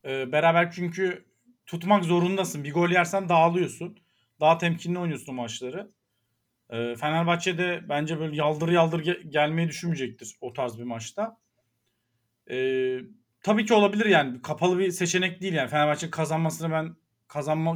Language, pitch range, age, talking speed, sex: Turkish, 125-210 Hz, 40-59, 130 wpm, male